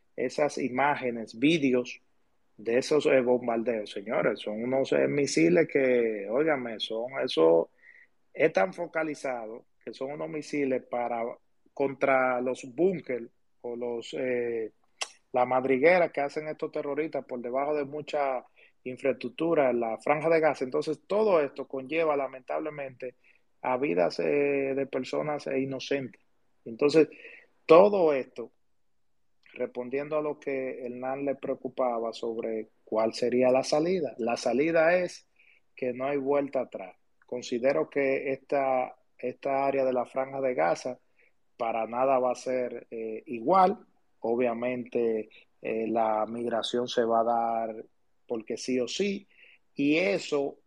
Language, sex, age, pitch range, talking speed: Spanish, male, 30-49, 120-145 Hz, 130 wpm